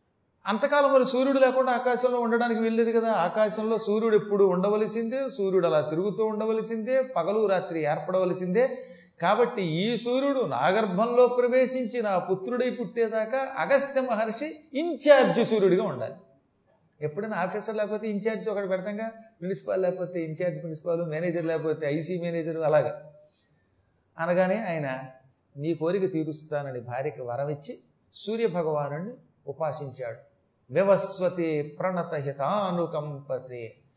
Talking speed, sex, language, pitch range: 100 wpm, male, Telugu, 150-215 Hz